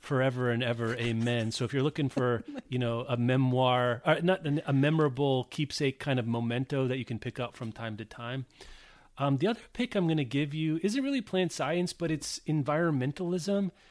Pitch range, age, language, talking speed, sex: 130-165 Hz, 30-49, English, 200 wpm, male